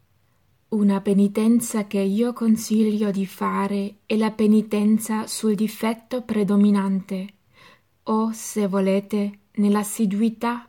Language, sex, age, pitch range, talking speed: Italian, female, 20-39, 190-215 Hz, 95 wpm